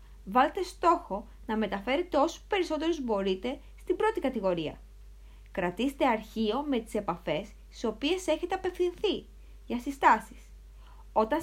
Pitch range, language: 210-315 Hz, Greek